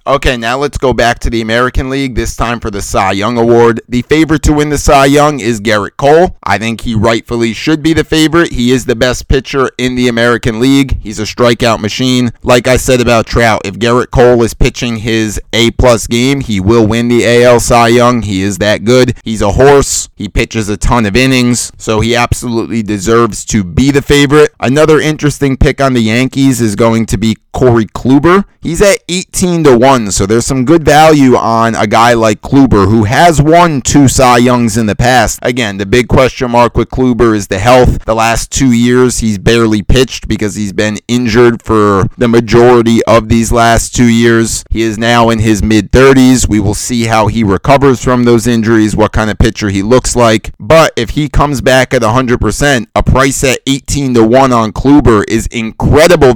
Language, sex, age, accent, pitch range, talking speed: English, male, 30-49, American, 110-130 Hz, 200 wpm